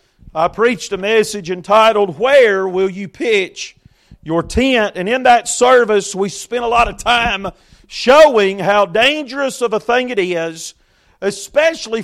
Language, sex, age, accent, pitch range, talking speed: English, male, 40-59, American, 190-260 Hz, 150 wpm